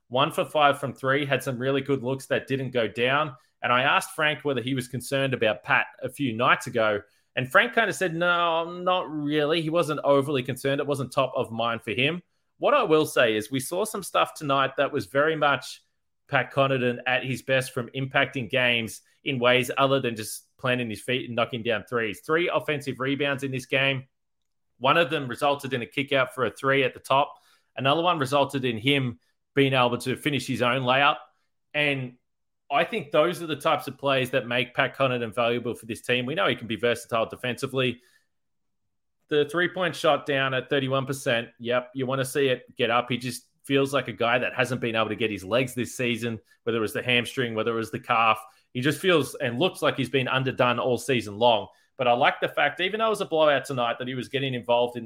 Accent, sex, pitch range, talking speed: Australian, male, 120-145 Hz, 225 wpm